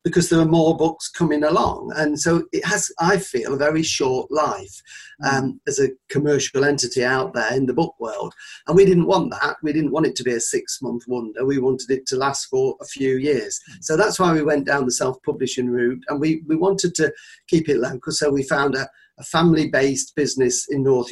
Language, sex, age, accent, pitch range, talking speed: English, male, 40-59, British, 125-165 Hz, 220 wpm